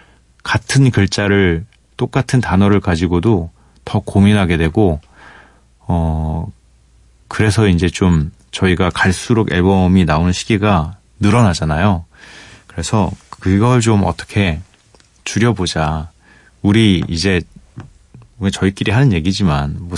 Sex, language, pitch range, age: male, Korean, 85-110 Hz, 30-49